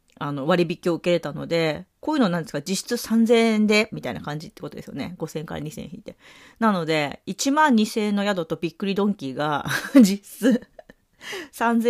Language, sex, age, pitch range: Japanese, female, 40-59, 160-225 Hz